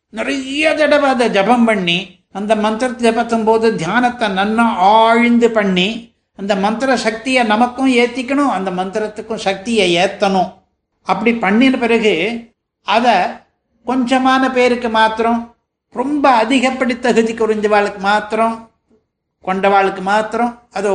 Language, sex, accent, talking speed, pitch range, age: Tamil, male, native, 110 wpm, 210-245 Hz, 60-79